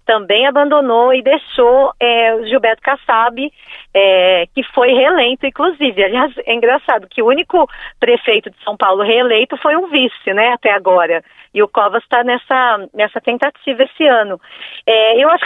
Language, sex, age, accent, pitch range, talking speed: Portuguese, female, 40-59, Brazilian, 200-265 Hz, 165 wpm